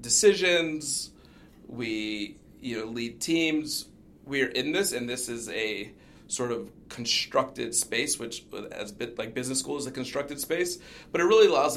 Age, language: 30-49, English